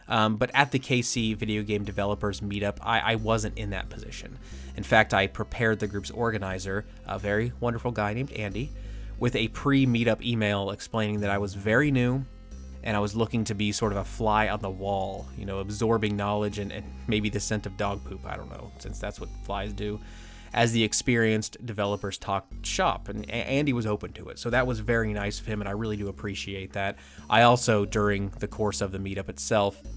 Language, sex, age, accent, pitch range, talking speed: English, male, 20-39, American, 100-115 Hz, 210 wpm